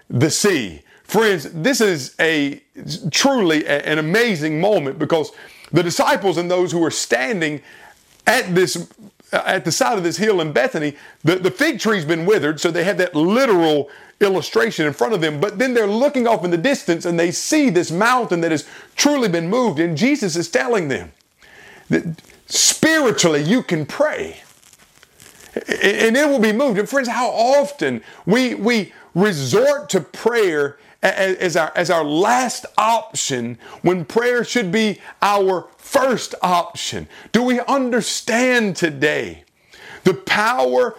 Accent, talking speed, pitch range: American, 155 wpm, 155-225 Hz